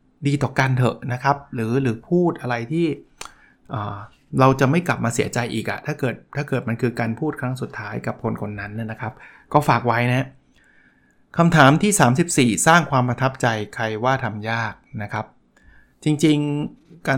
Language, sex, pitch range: Thai, male, 125-160 Hz